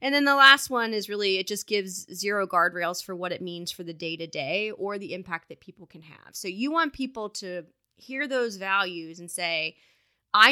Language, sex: English, female